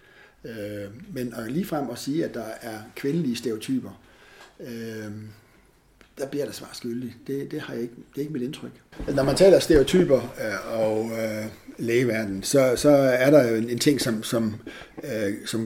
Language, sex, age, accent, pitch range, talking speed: Danish, male, 60-79, native, 110-125 Hz, 155 wpm